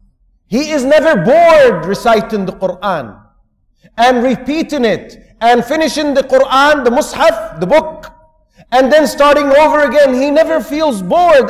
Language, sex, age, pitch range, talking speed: English, male, 50-69, 185-290 Hz, 140 wpm